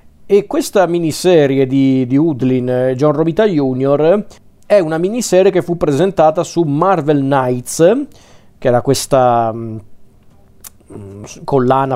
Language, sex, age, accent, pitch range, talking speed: Italian, male, 40-59, native, 125-160 Hz, 105 wpm